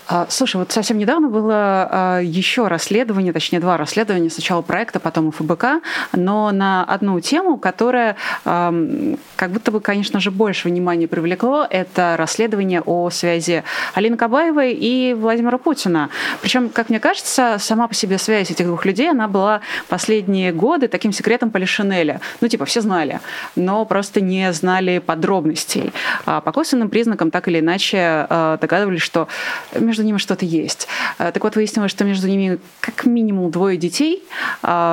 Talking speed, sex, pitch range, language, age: 145 wpm, female, 170-220 Hz, Russian, 20-39